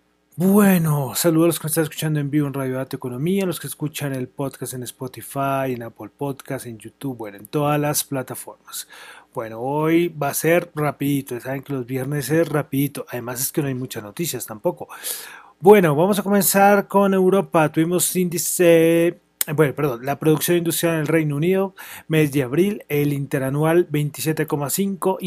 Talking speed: 175 wpm